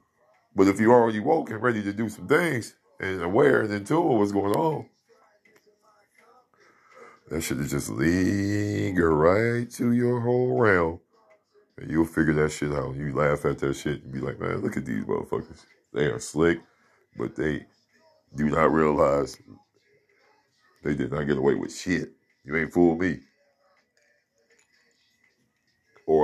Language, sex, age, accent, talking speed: English, male, 40-59, American, 155 wpm